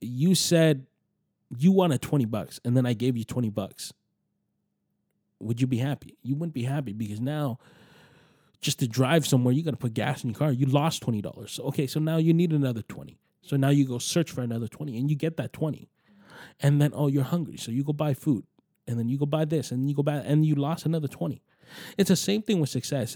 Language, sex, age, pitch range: English, male, 20-39, 125-160 Hz